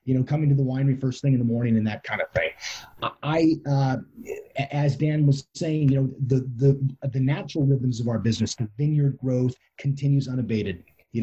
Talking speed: 205 wpm